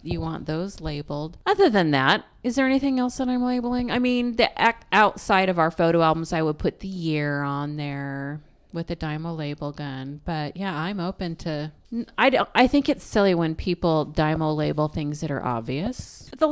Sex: female